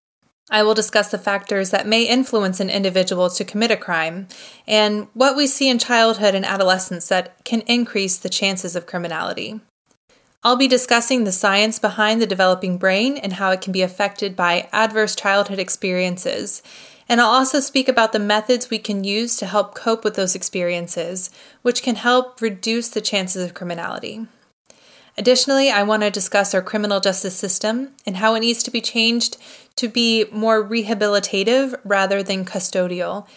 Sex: female